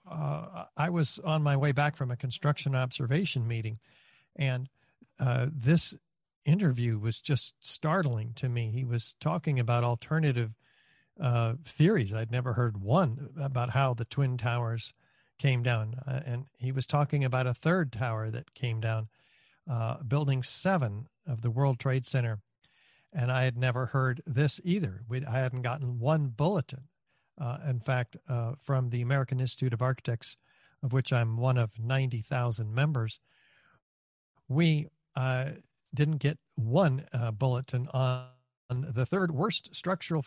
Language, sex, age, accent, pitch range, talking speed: English, male, 50-69, American, 120-150 Hz, 150 wpm